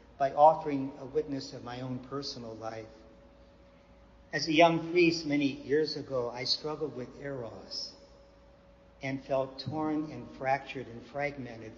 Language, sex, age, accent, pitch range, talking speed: English, male, 50-69, American, 120-145 Hz, 140 wpm